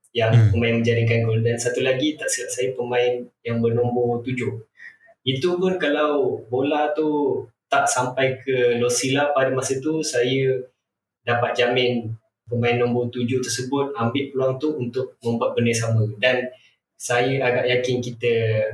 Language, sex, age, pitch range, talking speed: Malay, male, 20-39, 115-130 Hz, 145 wpm